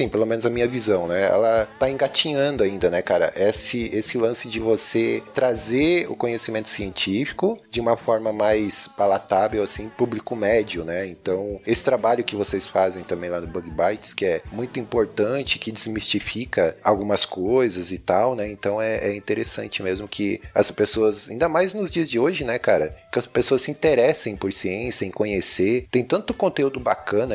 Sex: male